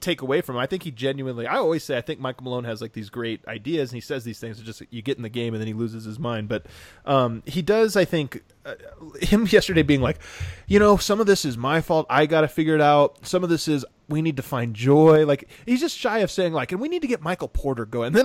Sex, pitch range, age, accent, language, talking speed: male, 120-180 Hz, 20-39, American, English, 290 wpm